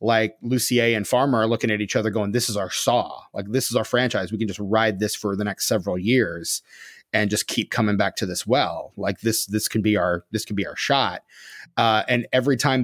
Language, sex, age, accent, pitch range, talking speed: English, male, 30-49, American, 100-115 Hz, 245 wpm